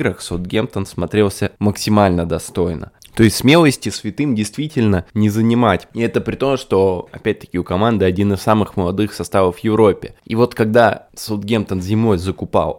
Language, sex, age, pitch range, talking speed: Russian, male, 20-39, 95-110 Hz, 160 wpm